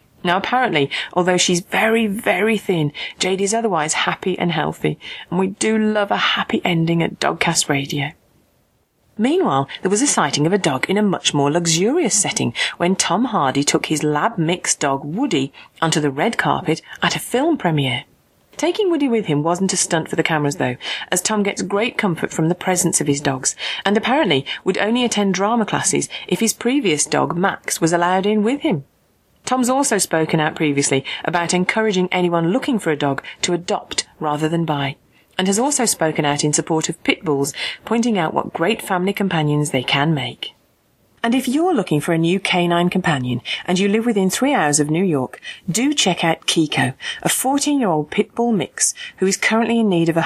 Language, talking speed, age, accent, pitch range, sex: English, 195 wpm, 30-49, British, 155-220 Hz, female